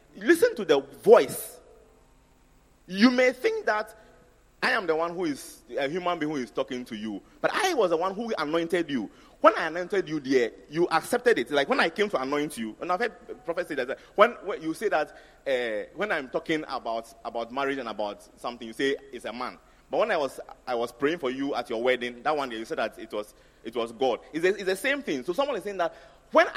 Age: 30-49